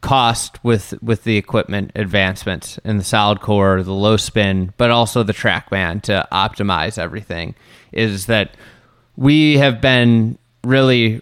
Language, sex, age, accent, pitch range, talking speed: English, male, 20-39, American, 105-130 Hz, 145 wpm